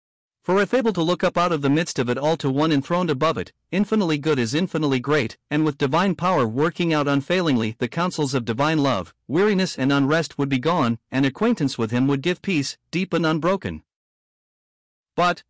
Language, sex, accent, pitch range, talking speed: English, male, American, 125-175 Hz, 200 wpm